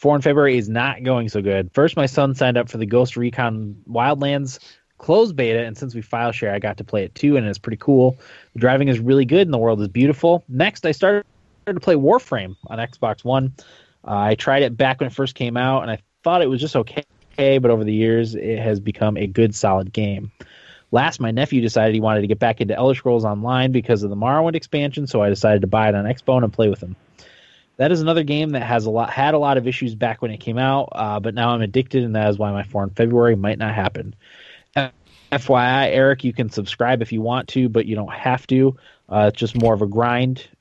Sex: male